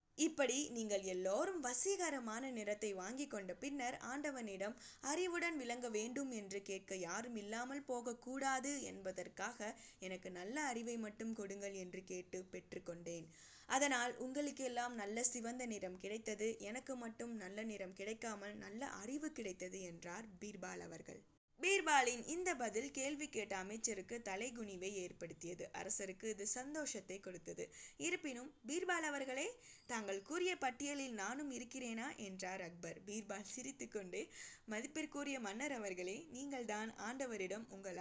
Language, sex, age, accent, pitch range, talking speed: Tamil, female, 20-39, native, 195-265 Hz, 115 wpm